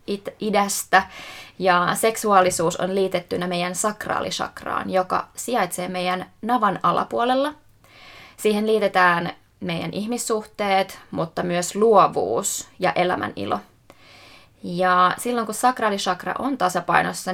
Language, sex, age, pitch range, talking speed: Finnish, female, 20-39, 180-205 Hz, 95 wpm